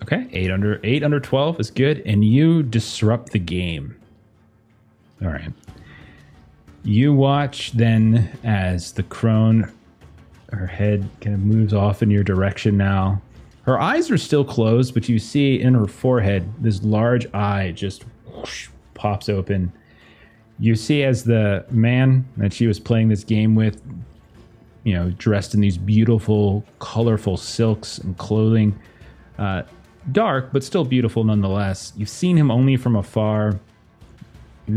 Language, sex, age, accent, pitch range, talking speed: English, male, 30-49, American, 100-120 Hz, 145 wpm